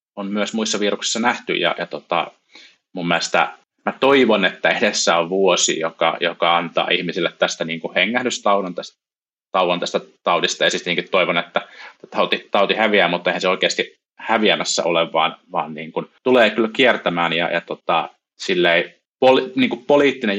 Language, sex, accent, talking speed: Finnish, male, native, 160 wpm